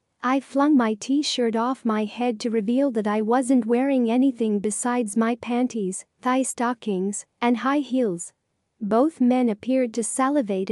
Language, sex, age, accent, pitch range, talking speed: English, female, 40-59, American, 220-260 Hz, 150 wpm